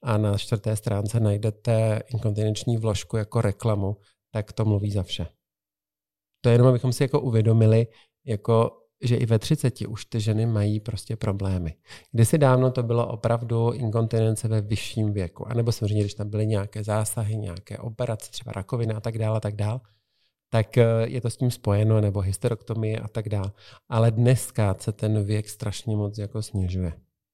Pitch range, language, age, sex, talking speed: 105-115 Hz, Czech, 40-59, male, 165 wpm